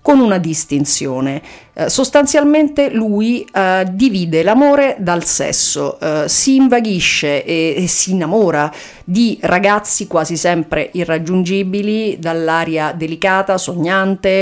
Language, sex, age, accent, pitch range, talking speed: Italian, female, 40-59, native, 155-195 Hz, 110 wpm